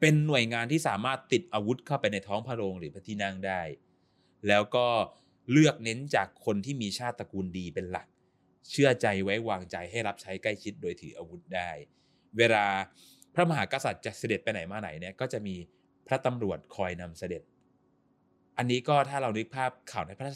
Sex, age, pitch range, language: male, 20-39, 95-130 Hz, Thai